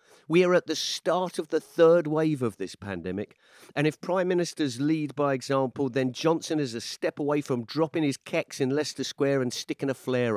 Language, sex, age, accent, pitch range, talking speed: English, male, 50-69, British, 115-155 Hz, 210 wpm